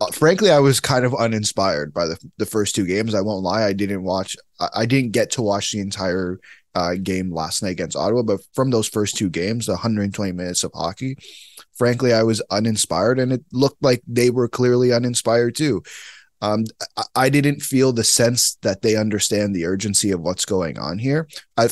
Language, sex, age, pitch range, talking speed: English, male, 20-39, 100-130 Hz, 205 wpm